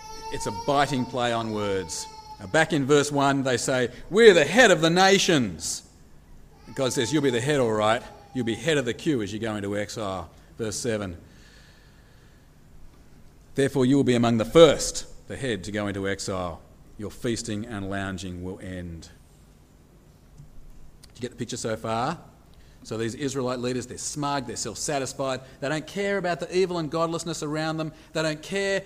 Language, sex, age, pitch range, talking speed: English, male, 40-59, 105-175 Hz, 180 wpm